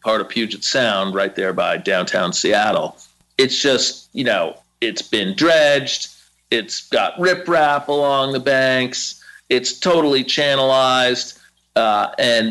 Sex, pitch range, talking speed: male, 105-135 Hz, 130 wpm